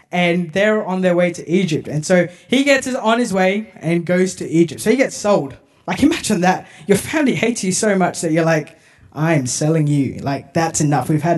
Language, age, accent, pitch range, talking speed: English, 10-29, Australian, 160-220 Hz, 220 wpm